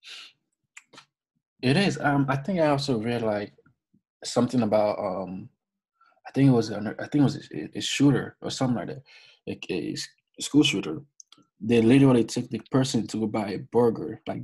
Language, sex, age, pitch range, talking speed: English, male, 20-39, 125-155 Hz, 180 wpm